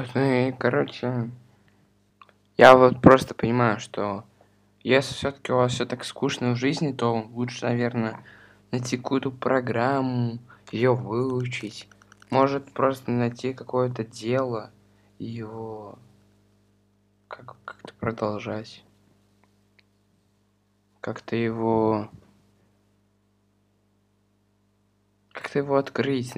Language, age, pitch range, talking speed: Russian, 20-39, 100-125 Hz, 95 wpm